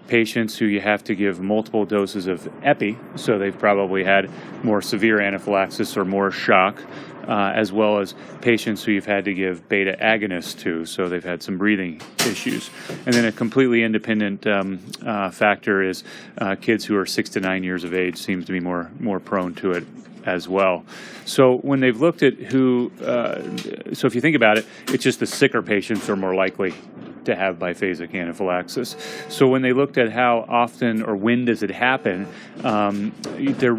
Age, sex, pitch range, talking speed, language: 30-49, male, 100-115 Hz, 190 wpm, English